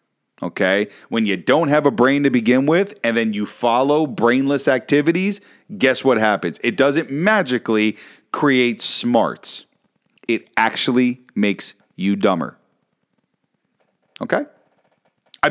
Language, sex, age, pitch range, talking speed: English, male, 40-59, 95-135 Hz, 120 wpm